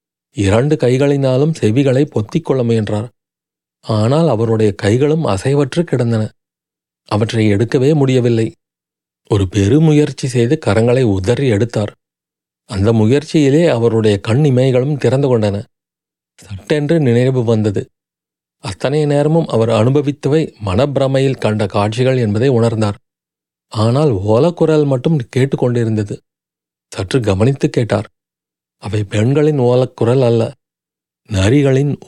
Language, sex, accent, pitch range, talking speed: Tamil, male, native, 110-135 Hz, 95 wpm